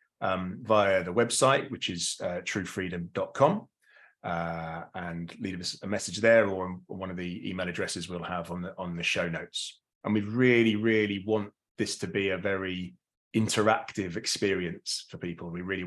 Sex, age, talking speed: male, 30-49, 170 wpm